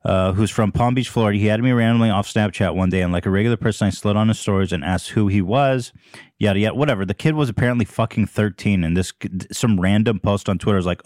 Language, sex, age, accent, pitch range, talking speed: English, male, 30-49, American, 95-115 Hz, 255 wpm